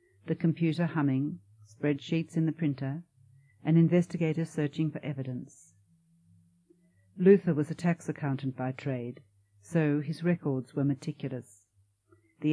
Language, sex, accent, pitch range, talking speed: English, female, Australian, 130-165 Hz, 120 wpm